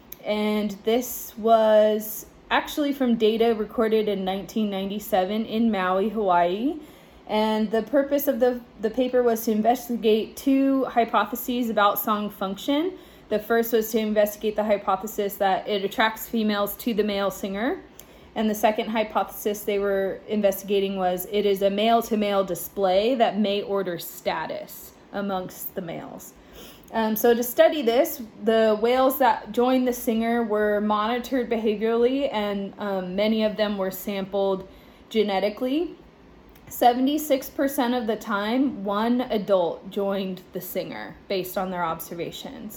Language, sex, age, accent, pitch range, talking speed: English, female, 20-39, American, 200-240 Hz, 135 wpm